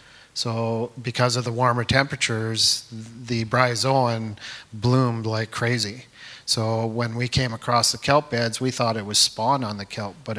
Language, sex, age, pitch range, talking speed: English, male, 40-59, 110-125 Hz, 160 wpm